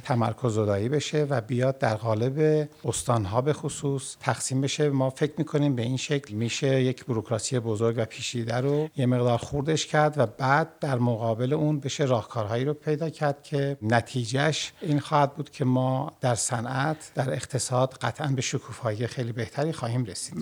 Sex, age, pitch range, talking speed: male, 50-69, 120-150 Hz, 170 wpm